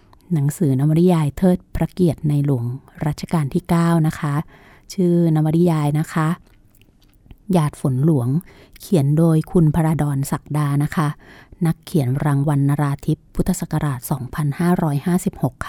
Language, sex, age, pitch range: Thai, female, 20-39, 135-170 Hz